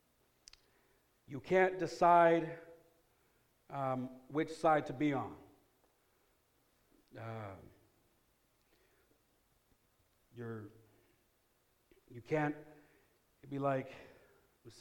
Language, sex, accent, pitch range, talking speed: English, male, American, 125-170 Hz, 70 wpm